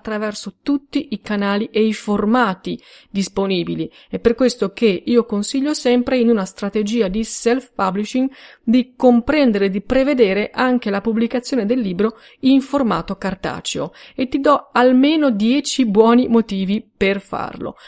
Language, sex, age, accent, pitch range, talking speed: Italian, female, 30-49, native, 195-245 Hz, 140 wpm